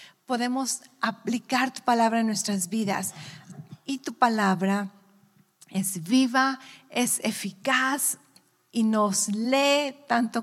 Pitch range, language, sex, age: 205-255 Hz, English, female, 40-59